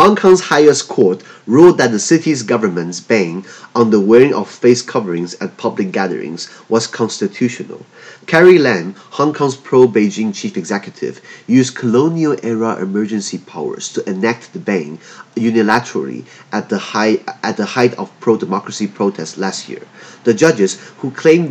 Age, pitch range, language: 30-49, 100-140 Hz, Chinese